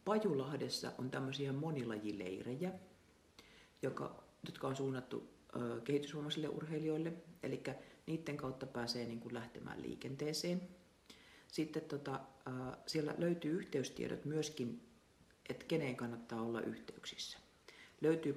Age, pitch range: 50-69, 120-155 Hz